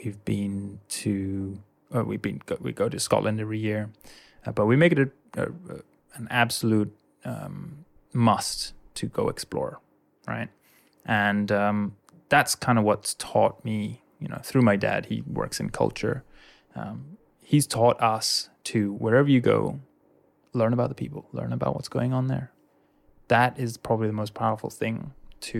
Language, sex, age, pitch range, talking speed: English, male, 20-39, 105-125 Hz, 165 wpm